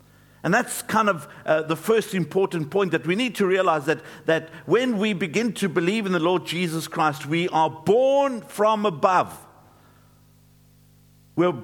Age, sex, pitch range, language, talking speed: 50-69, male, 140-200 Hz, English, 165 wpm